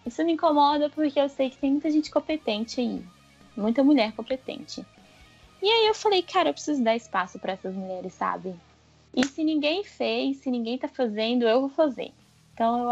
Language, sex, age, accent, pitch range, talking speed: Portuguese, female, 10-29, Brazilian, 230-305 Hz, 190 wpm